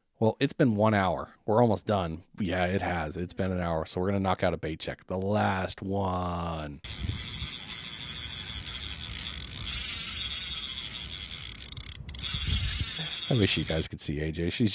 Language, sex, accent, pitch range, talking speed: English, male, American, 90-110 Hz, 140 wpm